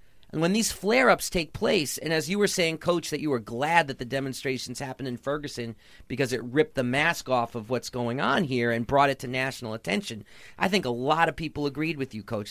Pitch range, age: 135-190 Hz, 40-59